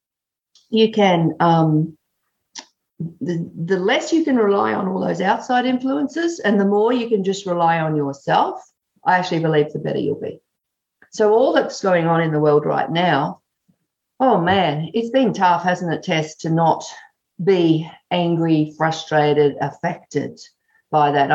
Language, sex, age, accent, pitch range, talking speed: English, female, 50-69, Australian, 155-215 Hz, 155 wpm